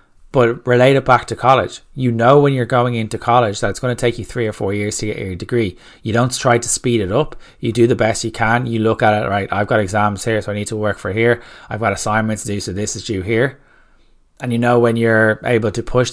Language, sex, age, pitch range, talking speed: English, male, 20-39, 105-120 Hz, 270 wpm